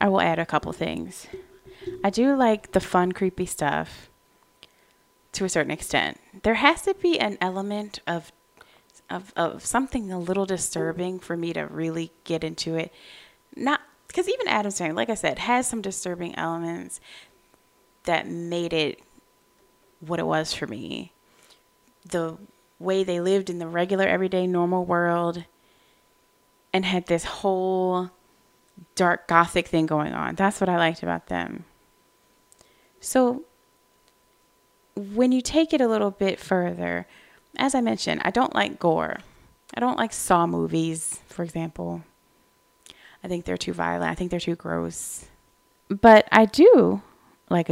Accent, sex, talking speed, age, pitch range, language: American, female, 150 wpm, 20-39, 160-195 Hz, English